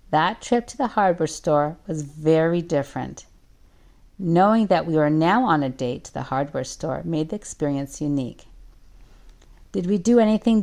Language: English